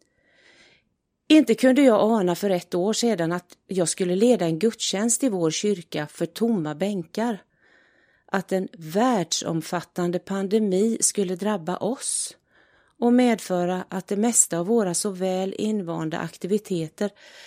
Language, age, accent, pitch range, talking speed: Swedish, 40-59, native, 175-230 Hz, 130 wpm